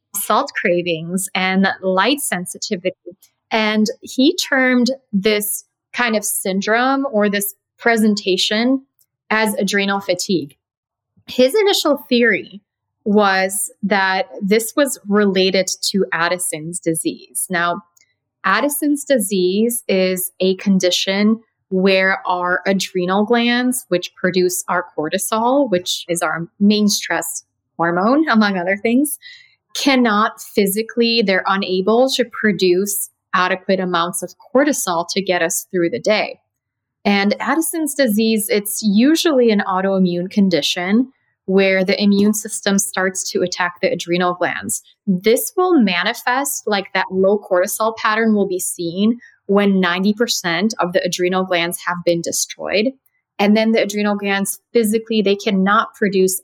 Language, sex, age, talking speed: English, female, 20-39, 120 wpm